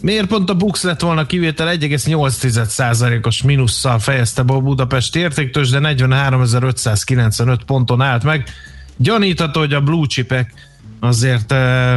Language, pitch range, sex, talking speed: Hungarian, 120-160 Hz, male, 120 wpm